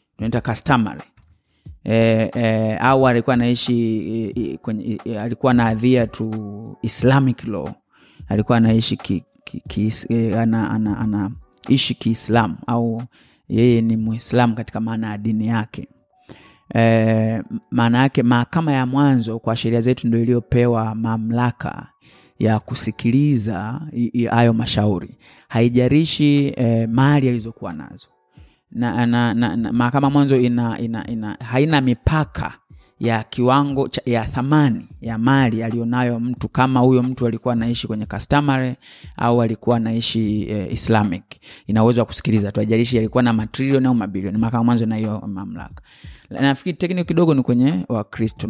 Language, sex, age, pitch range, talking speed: Swahili, male, 30-49, 110-125 Hz, 130 wpm